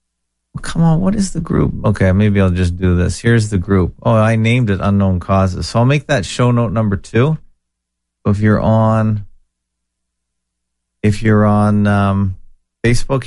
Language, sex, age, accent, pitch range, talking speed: English, male, 40-59, American, 80-115 Hz, 165 wpm